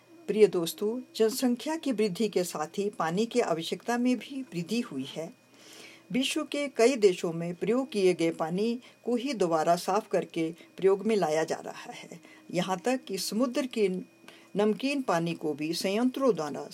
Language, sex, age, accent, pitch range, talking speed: Hindi, female, 50-69, native, 175-245 Hz, 165 wpm